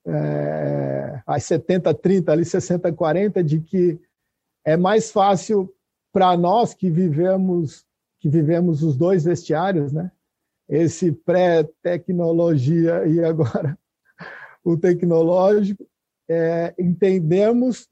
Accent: Brazilian